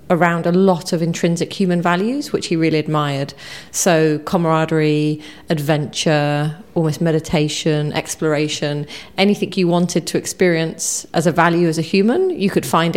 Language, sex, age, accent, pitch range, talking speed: English, female, 30-49, British, 165-185 Hz, 145 wpm